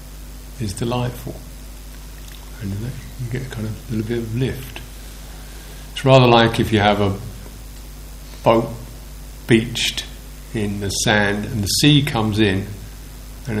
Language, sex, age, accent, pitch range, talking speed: English, male, 50-69, British, 100-120 Hz, 130 wpm